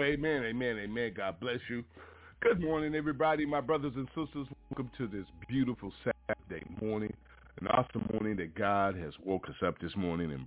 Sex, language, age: male, English, 40-59